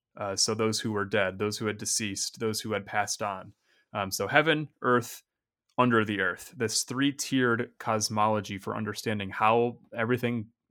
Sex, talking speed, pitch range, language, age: male, 170 wpm, 105-120 Hz, English, 20-39